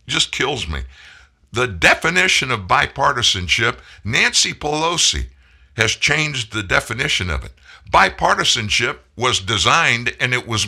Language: English